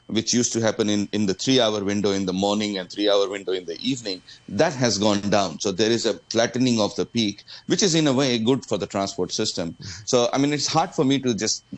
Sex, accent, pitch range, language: male, Indian, 100-120 Hz, English